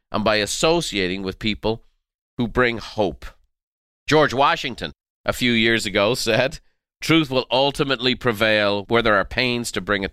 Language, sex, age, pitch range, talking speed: English, male, 50-69, 95-130 Hz, 155 wpm